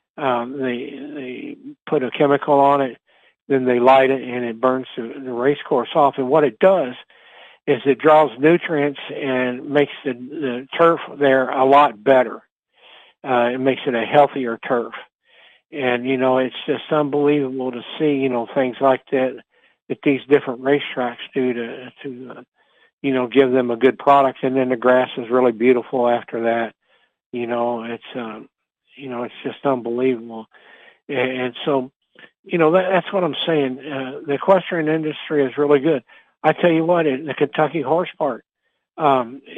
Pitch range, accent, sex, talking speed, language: 125-145 Hz, American, male, 175 wpm, English